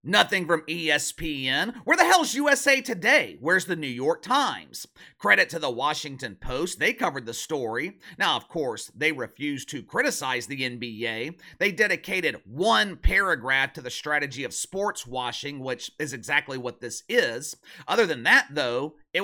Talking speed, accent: 160 wpm, American